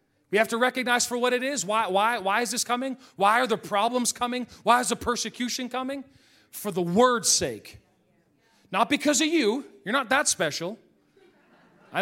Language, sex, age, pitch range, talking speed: English, male, 40-59, 180-245 Hz, 185 wpm